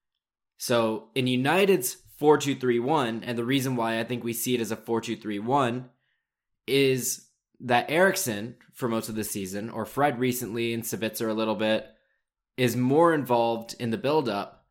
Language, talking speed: English, 155 wpm